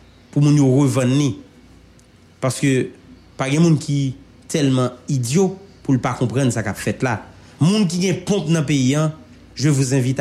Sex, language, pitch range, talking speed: male, English, 115-155 Hz, 170 wpm